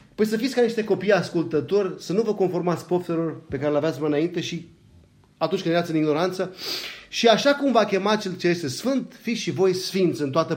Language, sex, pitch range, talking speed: Romanian, male, 145-195 Hz, 225 wpm